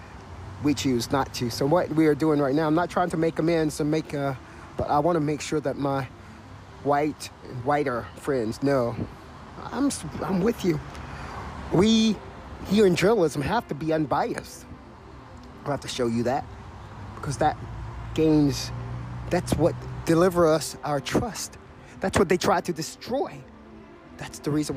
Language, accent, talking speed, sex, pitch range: English, American, 165 wpm, male, 95-155 Hz